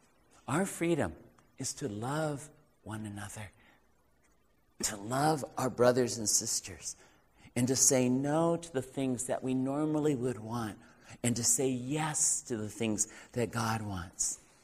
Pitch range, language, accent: 125-175 Hz, English, American